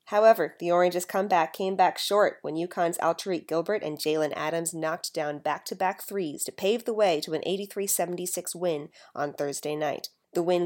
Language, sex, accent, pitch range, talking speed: English, female, American, 160-200 Hz, 175 wpm